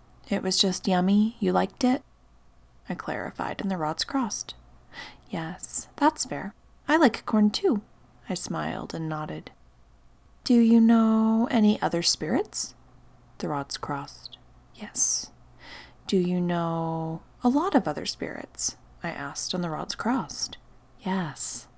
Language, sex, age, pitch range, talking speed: English, female, 30-49, 165-235 Hz, 135 wpm